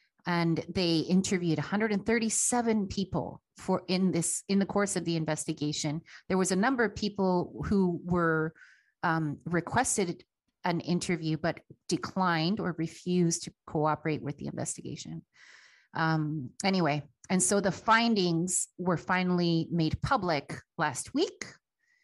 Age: 30-49